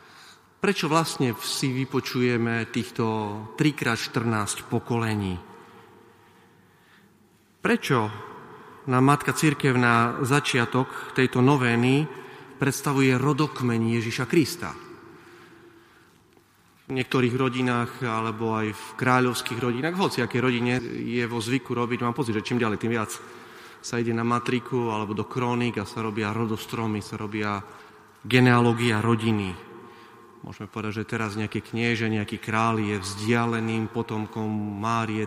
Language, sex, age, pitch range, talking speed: Slovak, male, 30-49, 110-130 Hz, 110 wpm